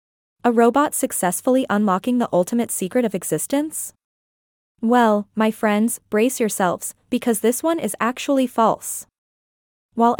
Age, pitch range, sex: 20-39, 205-255 Hz, female